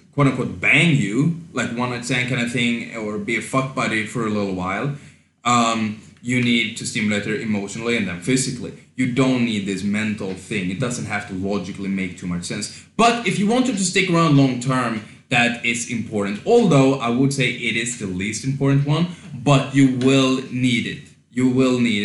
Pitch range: 110-135 Hz